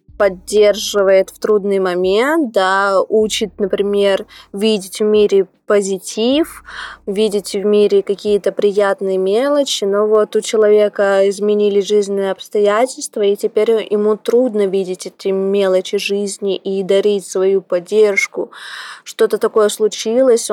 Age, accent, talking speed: 20-39, native, 115 wpm